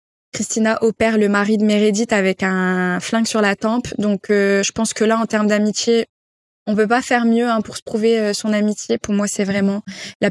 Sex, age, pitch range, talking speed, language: female, 20-39, 200-225 Hz, 220 wpm, French